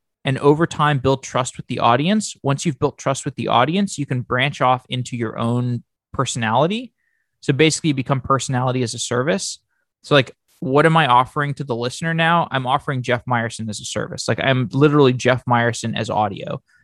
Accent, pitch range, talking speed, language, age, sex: American, 120-150 Hz, 195 wpm, English, 20-39, male